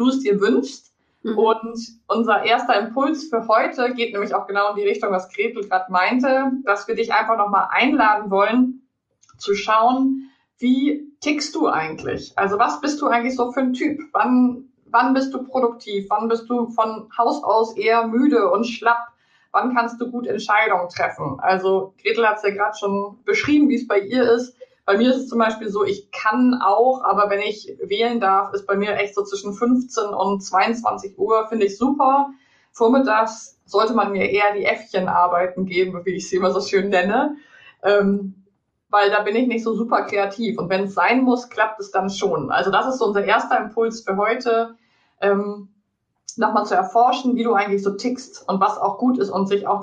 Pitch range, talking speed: 200-250 Hz, 195 wpm